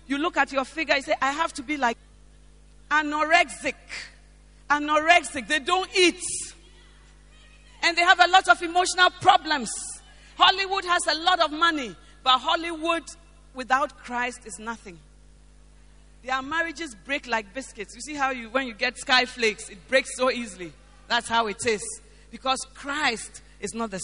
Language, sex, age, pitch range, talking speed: English, female, 40-59, 225-330 Hz, 160 wpm